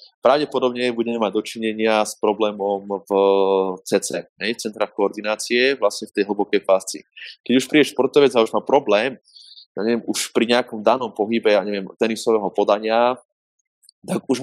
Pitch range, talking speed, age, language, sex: 110-125 Hz, 160 wpm, 20-39, Slovak, male